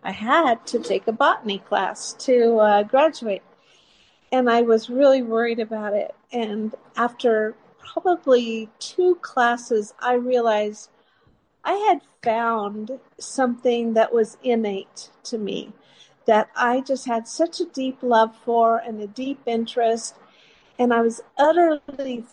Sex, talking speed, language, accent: female, 135 wpm, English, American